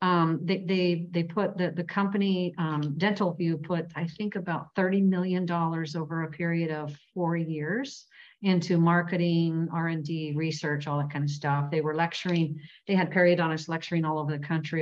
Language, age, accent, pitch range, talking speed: English, 50-69, American, 155-190 Hz, 180 wpm